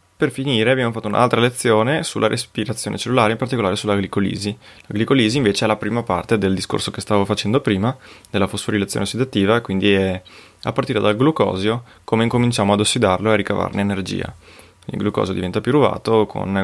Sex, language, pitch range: male, Italian, 100-120 Hz